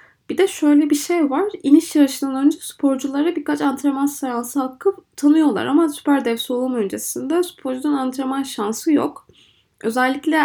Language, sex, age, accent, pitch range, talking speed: Turkish, female, 20-39, native, 230-300 Hz, 145 wpm